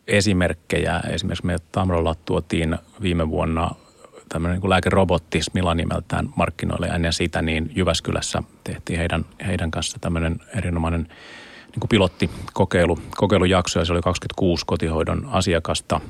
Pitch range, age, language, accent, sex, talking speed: 80-95 Hz, 30-49, Finnish, native, male, 105 wpm